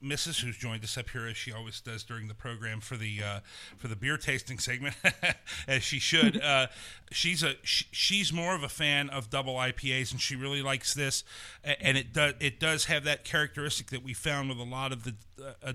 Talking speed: 215 wpm